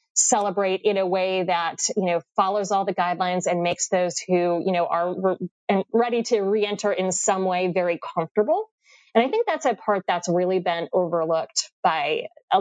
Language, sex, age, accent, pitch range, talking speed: English, female, 20-39, American, 175-210 Hz, 190 wpm